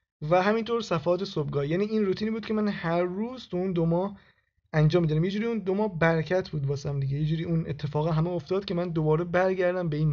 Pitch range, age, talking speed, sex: 140-185 Hz, 20-39, 225 wpm, male